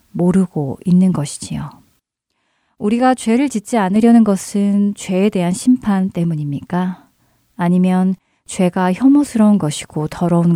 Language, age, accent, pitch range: Korean, 30-49, native, 165-215 Hz